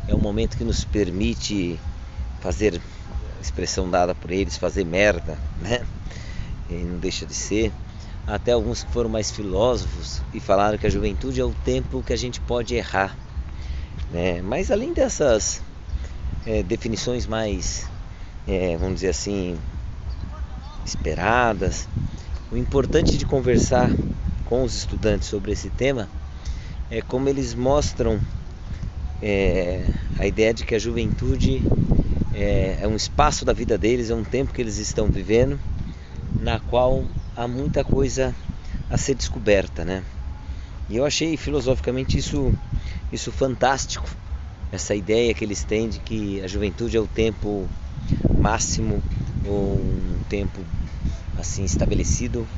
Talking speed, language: 135 wpm, Portuguese